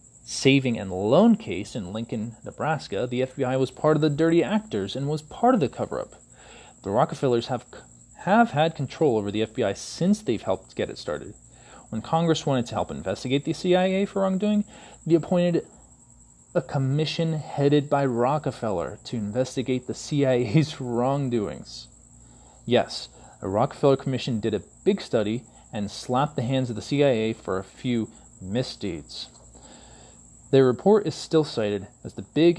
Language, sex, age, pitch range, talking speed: English, male, 30-49, 110-150 Hz, 155 wpm